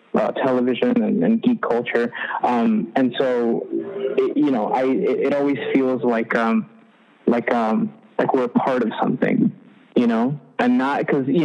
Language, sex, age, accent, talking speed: English, male, 20-39, American, 175 wpm